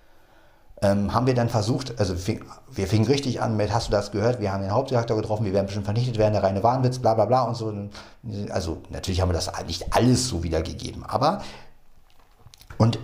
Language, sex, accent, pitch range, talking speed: German, male, German, 100-140 Hz, 205 wpm